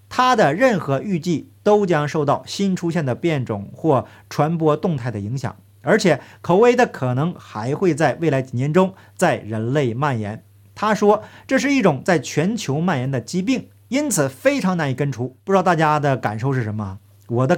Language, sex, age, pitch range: Chinese, male, 50-69, 125-195 Hz